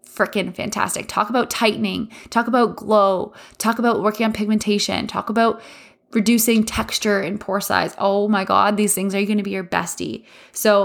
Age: 20-39